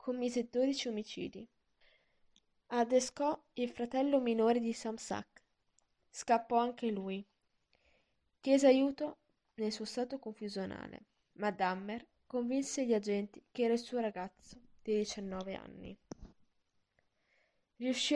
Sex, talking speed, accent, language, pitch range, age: female, 105 wpm, native, Italian, 200-245 Hz, 10-29